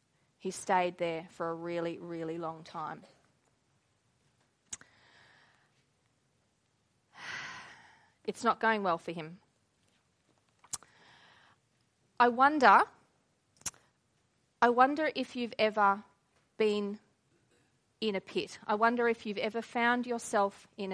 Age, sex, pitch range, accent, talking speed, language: 30-49, female, 190-235 Hz, Australian, 95 wpm, English